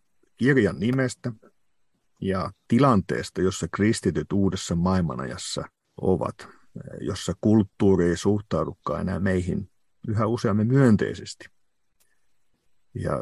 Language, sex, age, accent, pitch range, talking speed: Finnish, male, 50-69, native, 90-115 Hz, 85 wpm